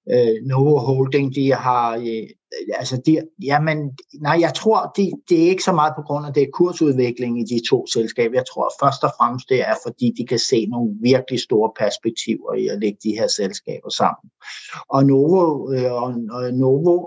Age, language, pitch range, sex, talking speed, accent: 60-79, Danish, 125-170 Hz, male, 190 wpm, native